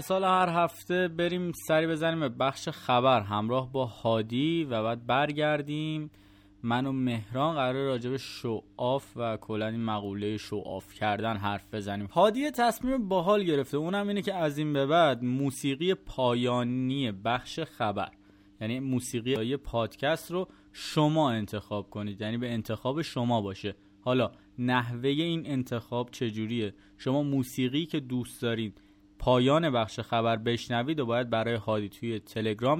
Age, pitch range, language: 20-39, 110-145 Hz, Persian